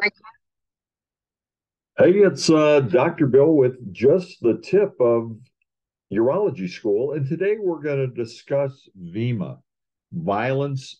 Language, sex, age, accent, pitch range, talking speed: English, male, 50-69, American, 100-160 Hz, 110 wpm